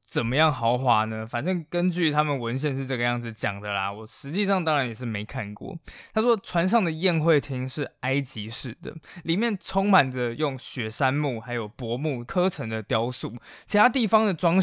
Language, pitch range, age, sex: Chinese, 125-170 Hz, 20-39, male